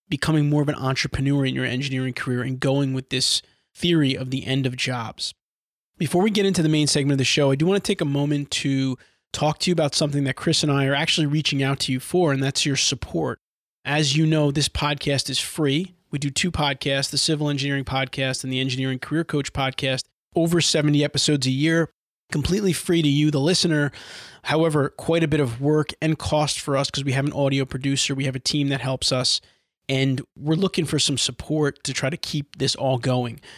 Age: 20-39